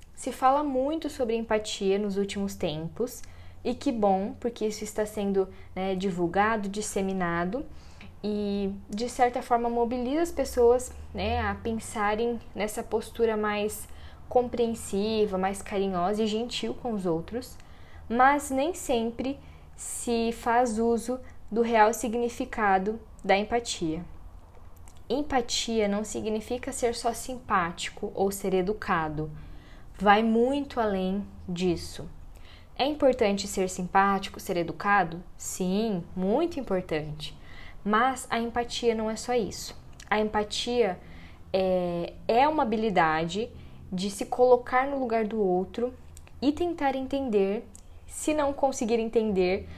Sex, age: female, 10-29